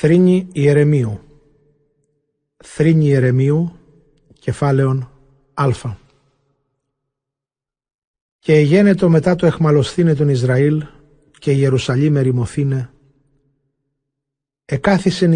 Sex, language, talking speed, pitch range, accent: male, Greek, 65 wpm, 135-155 Hz, native